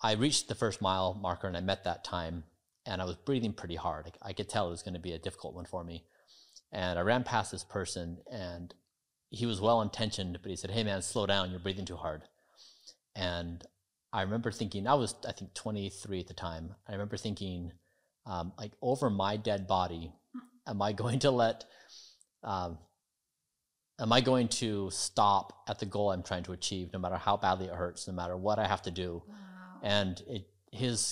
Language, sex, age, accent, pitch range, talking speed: English, male, 30-49, American, 90-110 Hz, 205 wpm